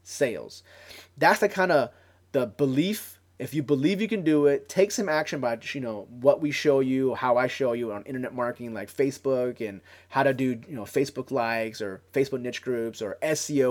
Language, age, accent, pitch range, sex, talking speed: English, 30-49, American, 120-155 Hz, male, 205 wpm